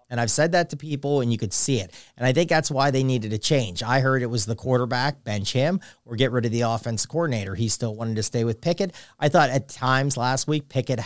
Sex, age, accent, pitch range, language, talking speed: male, 40-59, American, 115-135 Hz, English, 265 wpm